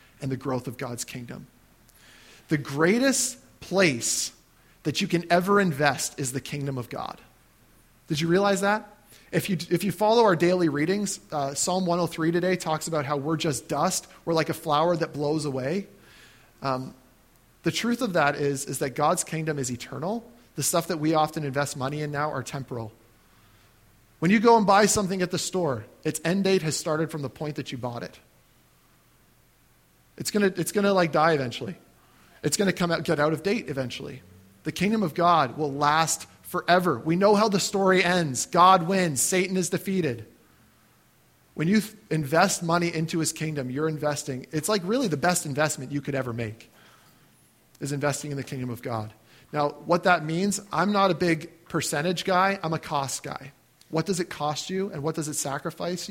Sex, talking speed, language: male, 190 wpm, English